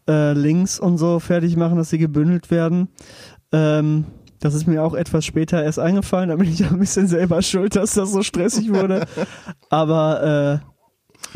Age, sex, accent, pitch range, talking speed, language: 20-39, male, German, 155-185 Hz, 180 wpm, German